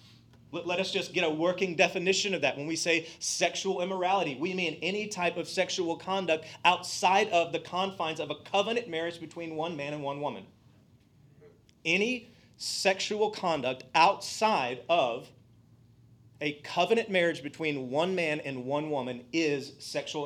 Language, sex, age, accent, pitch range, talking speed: English, male, 30-49, American, 130-190 Hz, 150 wpm